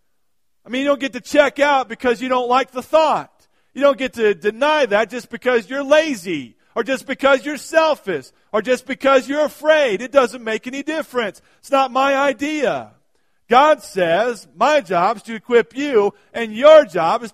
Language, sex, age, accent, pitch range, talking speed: English, male, 50-69, American, 210-270 Hz, 190 wpm